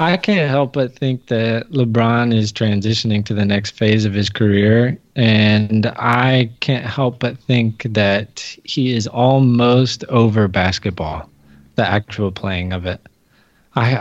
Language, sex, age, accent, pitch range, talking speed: English, male, 20-39, American, 105-125 Hz, 145 wpm